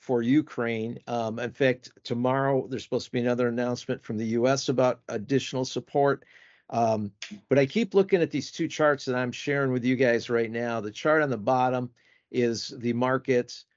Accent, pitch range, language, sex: American, 115-135 Hz, English, male